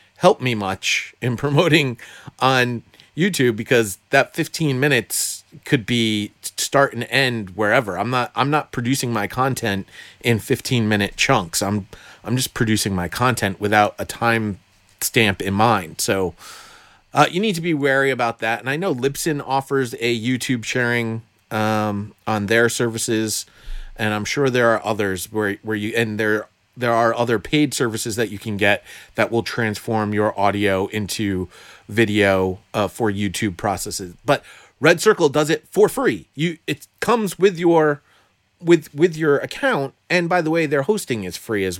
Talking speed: 170 wpm